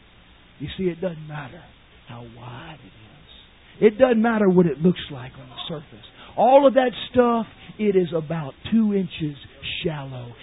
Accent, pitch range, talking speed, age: American, 145-230 Hz, 165 wpm, 50-69